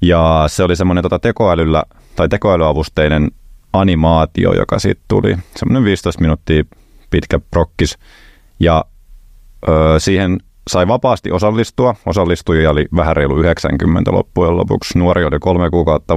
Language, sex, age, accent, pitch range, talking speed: Finnish, male, 30-49, native, 80-90 Hz, 125 wpm